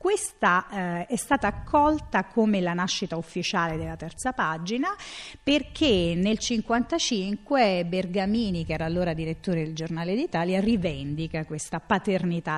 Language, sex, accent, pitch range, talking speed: Italian, female, native, 165-220 Hz, 125 wpm